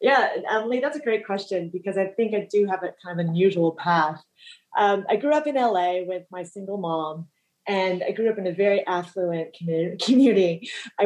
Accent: American